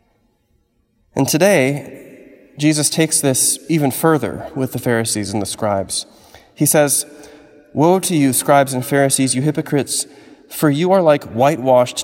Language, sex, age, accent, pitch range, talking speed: English, male, 20-39, American, 115-145 Hz, 140 wpm